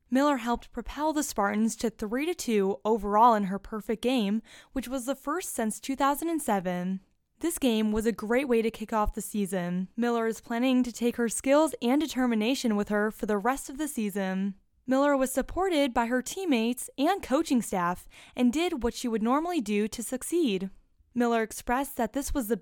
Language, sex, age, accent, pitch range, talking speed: English, female, 10-29, American, 210-270 Hz, 185 wpm